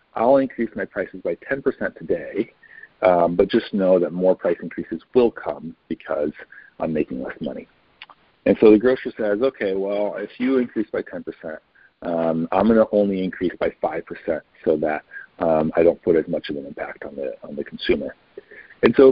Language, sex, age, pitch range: English, male, 40-59, 80-105 Hz